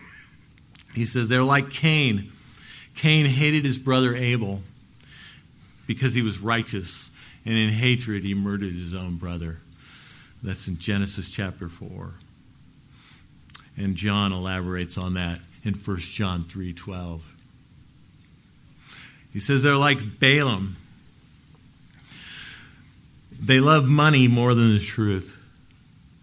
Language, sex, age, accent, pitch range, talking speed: English, male, 50-69, American, 100-120 Hz, 110 wpm